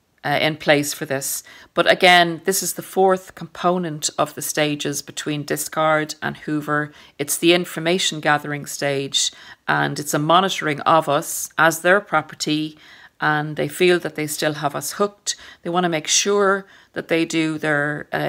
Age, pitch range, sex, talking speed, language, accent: 40-59, 150-175 Hz, female, 165 wpm, English, Irish